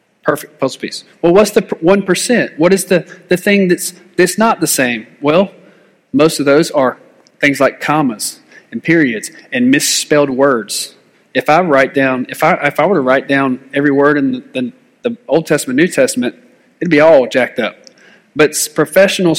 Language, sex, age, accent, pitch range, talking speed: English, male, 40-59, American, 145-185 Hz, 185 wpm